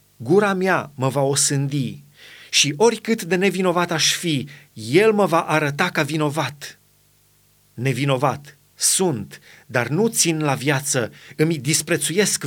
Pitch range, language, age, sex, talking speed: 140-175 Hz, Romanian, 30-49, male, 125 wpm